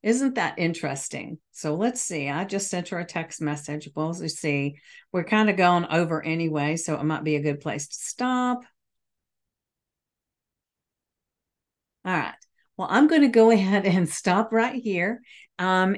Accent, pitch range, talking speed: American, 160-215 Hz, 165 wpm